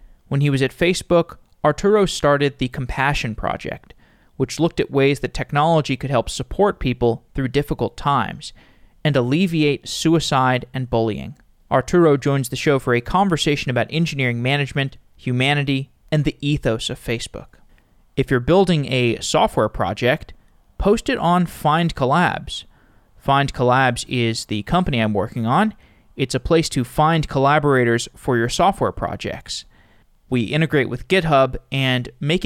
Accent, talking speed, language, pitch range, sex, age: American, 140 wpm, English, 120-155 Hz, male, 20-39